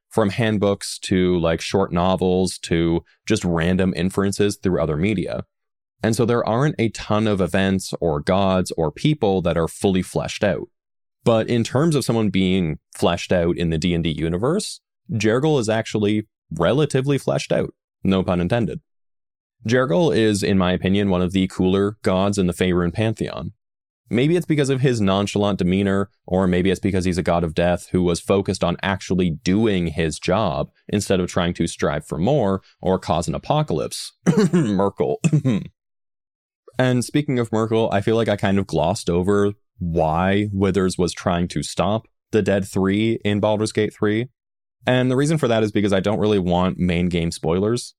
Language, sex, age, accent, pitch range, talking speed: English, male, 20-39, American, 90-110 Hz, 175 wpm